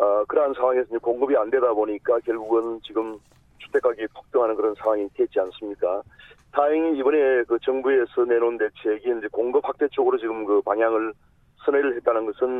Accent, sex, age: native, male, 40-59